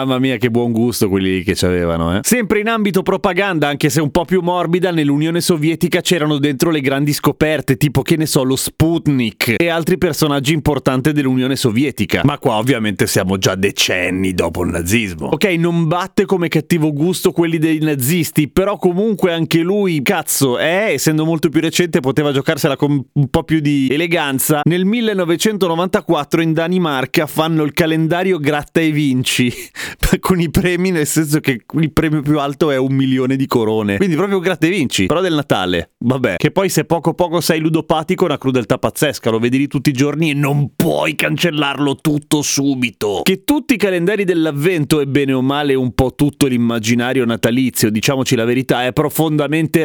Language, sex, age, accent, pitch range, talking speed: Italian, male, 30-49, native, 135-175 Hz, 180 wpm